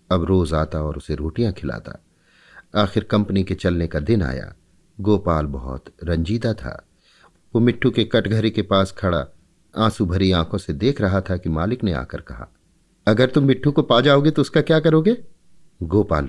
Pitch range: 80-120 Hz